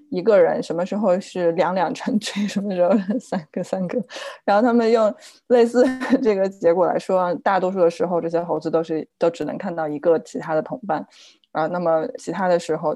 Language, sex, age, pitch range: Chinese, female, 20-39, 170-235 Hz